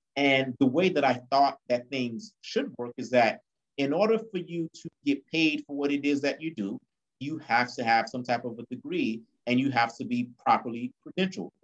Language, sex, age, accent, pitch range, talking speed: English, male, 30-49, American, 115-155 Hz, 215 wpm